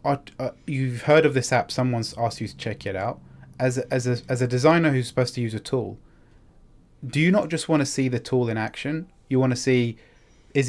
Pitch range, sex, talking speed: 110-130 Hz, male, 240 wpm